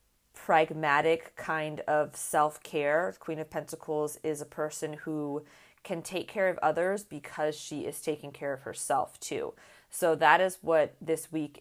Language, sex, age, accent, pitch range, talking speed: English, female, 30-49, American, 150-175 Hz, 155 wpm